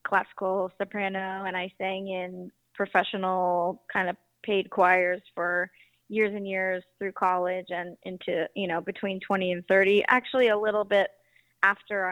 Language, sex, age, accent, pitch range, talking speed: English, female, 20-39, American, 185-205 Hz, 150 wpm